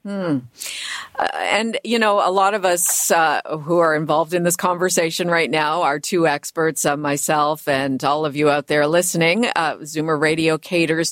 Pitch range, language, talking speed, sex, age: 150-190 Hz, English, 185 wpm, female, 50-69